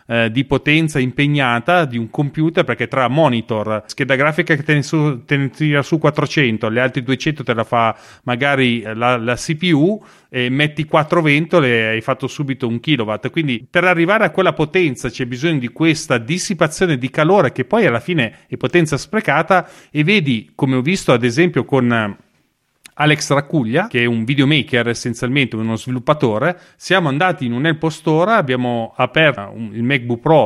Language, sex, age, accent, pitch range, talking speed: Italian, male, 30-49, native, 125-160 Hz, 165 wpm